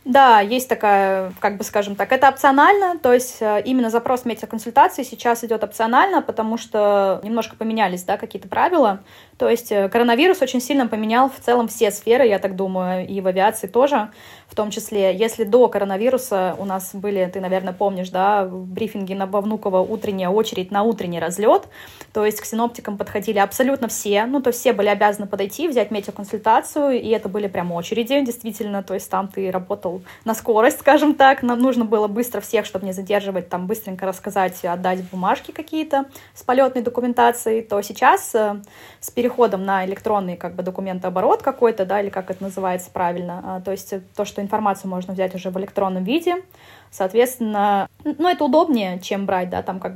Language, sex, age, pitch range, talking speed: Russian, female, 20-39, 195-240 Hz, 175 wpm